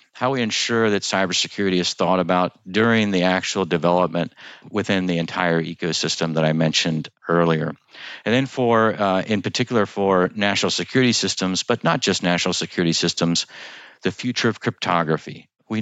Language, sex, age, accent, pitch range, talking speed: English, male, 50-69, American, 85-105 Hz, 155 wpm